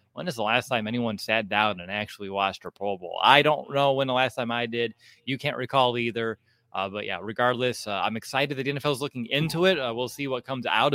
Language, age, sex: English, 20-39, male